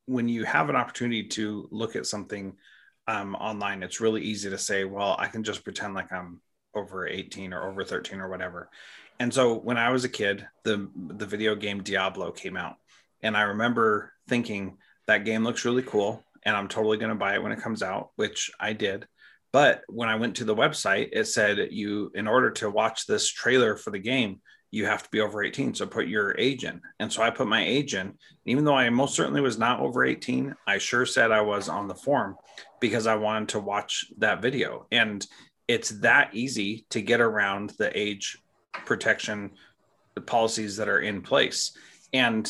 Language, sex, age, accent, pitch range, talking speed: English, male, 30-49, American, 100-115 Hz, 205 wpm